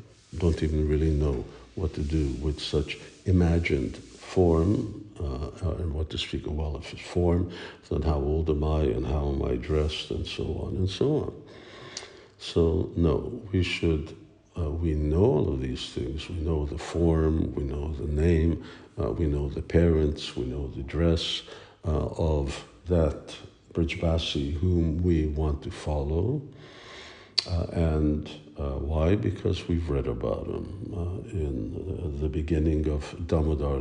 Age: 60-79